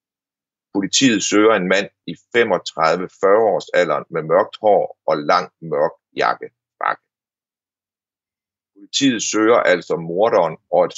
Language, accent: Danish, native